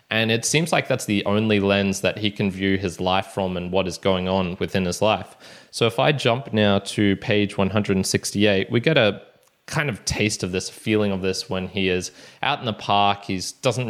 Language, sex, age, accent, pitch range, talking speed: English, male, 20-39, Australian, 95-120 Hz, 220 wpm